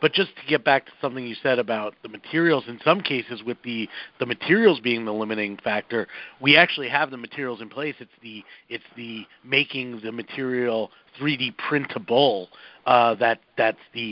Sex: male